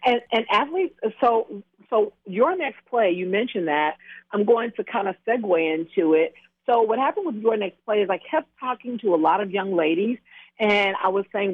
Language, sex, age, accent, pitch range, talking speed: English, female, 50-69, American, 195-240 Hz, 210 wpm